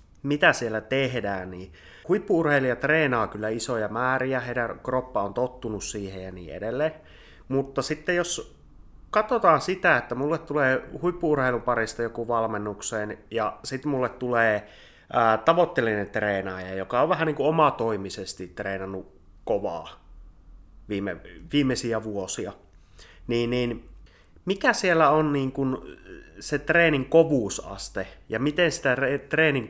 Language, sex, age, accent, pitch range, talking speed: Finnish, male, 30-49, native, 100-145 Hz, 120 wpm